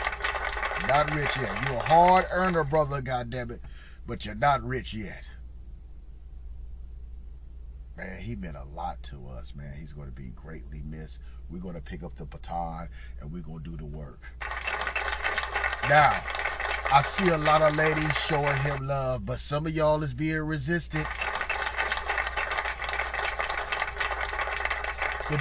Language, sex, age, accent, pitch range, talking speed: English, male, 30-49, American, 125-185 Hz, 145 wpm